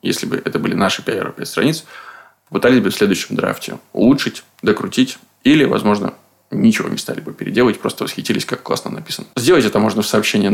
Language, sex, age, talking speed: Russian, male, 20-39, 175 wpm